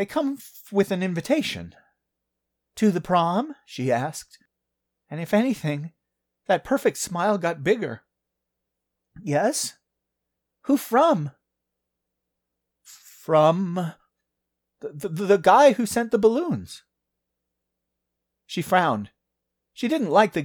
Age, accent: 30-49, American